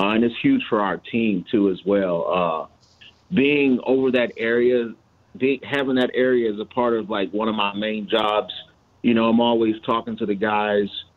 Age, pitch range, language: 30-49, 105-125 Hz, English